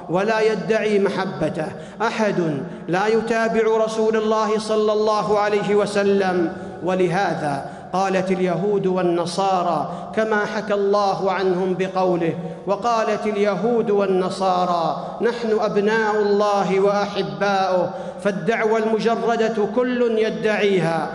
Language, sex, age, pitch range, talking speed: Arabic, male, 50-69, 190-215 Hz, 90 wpm